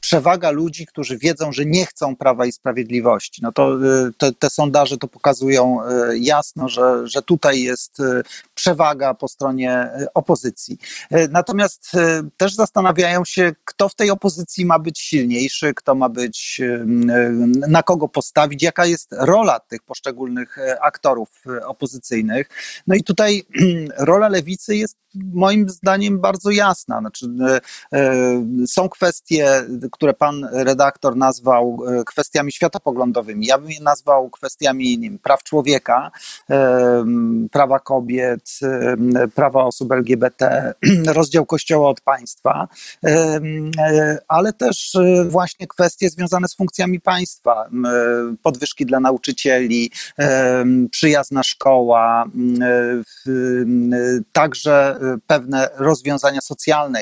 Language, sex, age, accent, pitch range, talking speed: Polish, male, 40-59, native, 125-165 Hz, 110 wpm